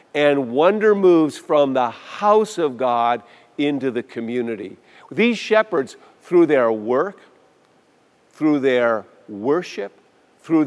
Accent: American